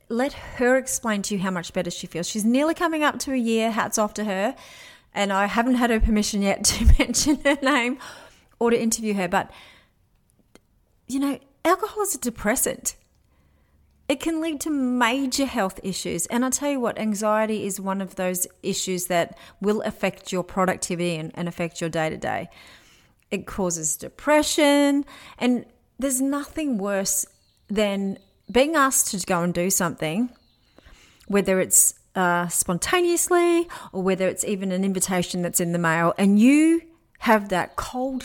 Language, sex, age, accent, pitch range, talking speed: English, female, 30-49, Australian, 185-245 Hz, 165 wpm